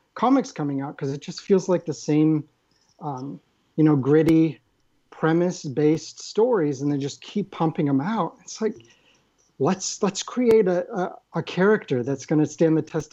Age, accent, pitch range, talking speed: 40-59, American, 140-175 Hz, 175 wpm